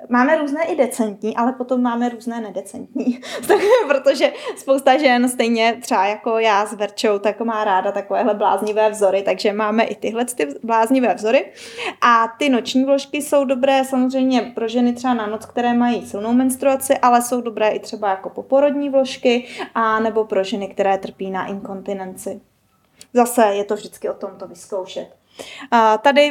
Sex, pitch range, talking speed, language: female, 205-255 Hz, 160 wpm, Czech